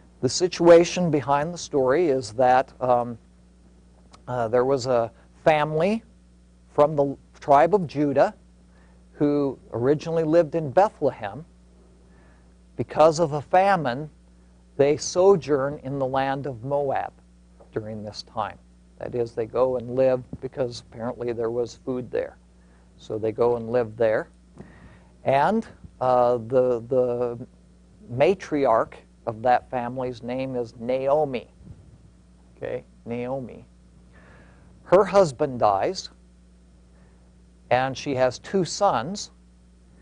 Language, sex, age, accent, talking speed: English, male, 50-69, American, 115 wpm